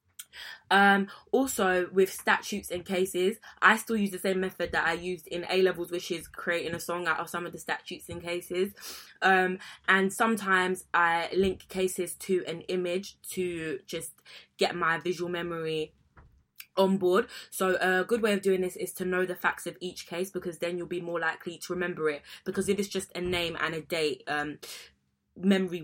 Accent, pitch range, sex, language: British, 160-190 Hz, female, English